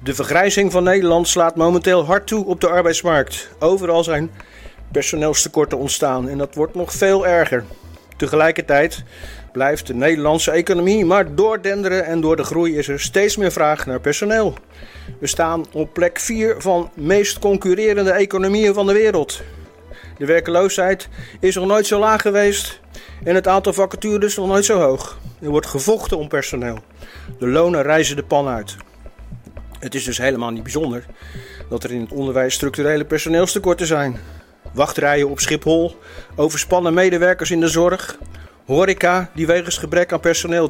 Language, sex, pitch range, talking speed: Dutch, male, 135-180 Hz, 160 wpm